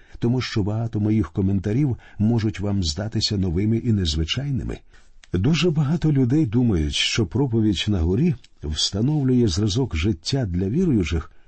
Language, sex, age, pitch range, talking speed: Ukrainian, male, 50-69, 100-135 Hz, 125 wpm